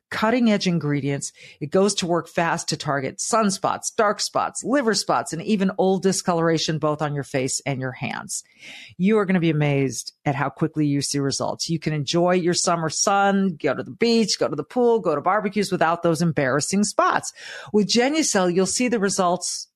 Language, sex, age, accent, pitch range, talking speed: English, female, 50-69, American, 155-200 Hz, 195 wpm